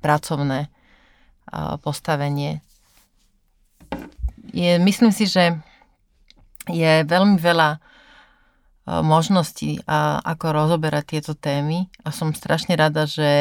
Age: 30-49